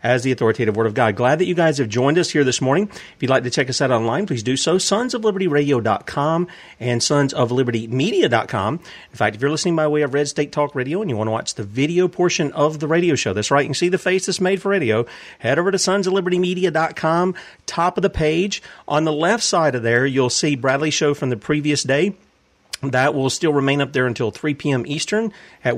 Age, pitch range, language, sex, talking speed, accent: 40-59, 125-155 Hz, English, male, 230 wpm, American